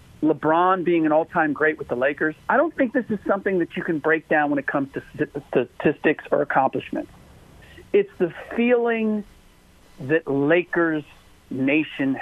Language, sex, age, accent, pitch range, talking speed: English, male, 50-69, American, 140-175 Hz, 155 wpm